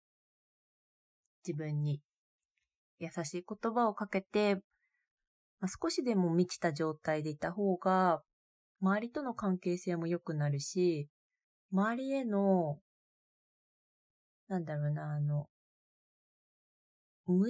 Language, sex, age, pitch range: Japanese, female, 20-39, 140-185 Hz